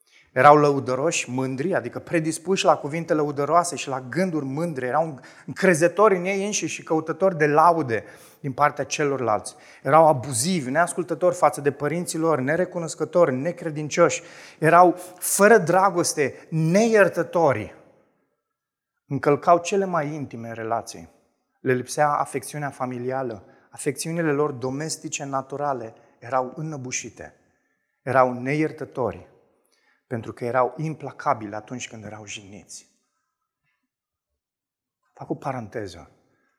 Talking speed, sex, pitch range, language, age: 105 wpm, male, 125-170 Hz, Romanian, 30-49